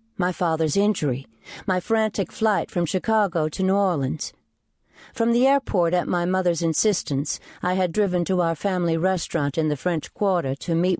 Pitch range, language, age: 160-210 Hz, English, 60-79